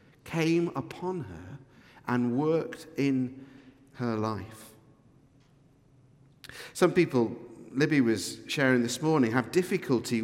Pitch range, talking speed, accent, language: 130-180 Hz, 100 wpm, British, English